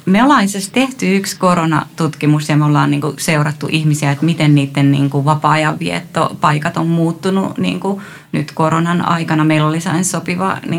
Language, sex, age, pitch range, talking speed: Finnish, female, 30-49, 145-175 Hz, 130 wpm